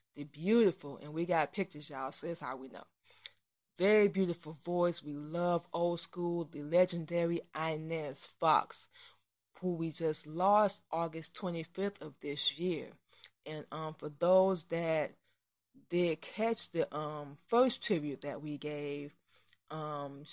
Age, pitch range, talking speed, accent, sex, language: 20-39, 150-180 Hz, 140 wpm, American, female, English